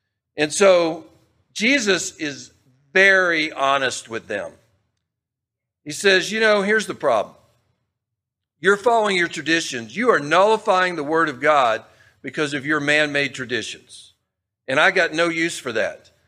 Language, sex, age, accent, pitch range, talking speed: English, male, 50-69, American, 130-195 Hz, 140 wpm